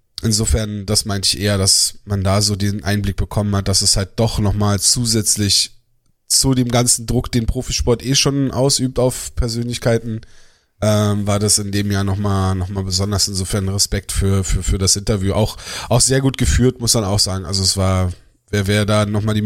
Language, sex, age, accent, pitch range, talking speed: German, male, 20-39, German, 105-125 Hz, 195 wpm